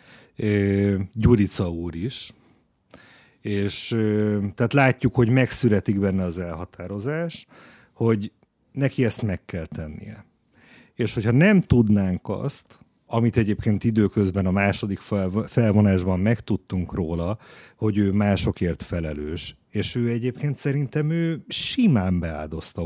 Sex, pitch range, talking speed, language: male, 100-125 Hz, 110 wpm, Hungarian